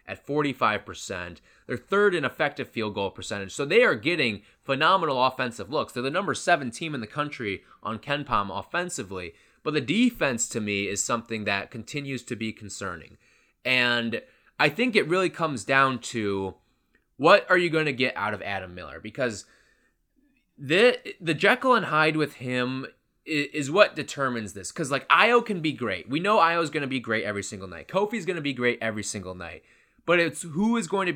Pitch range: 110-160 Hz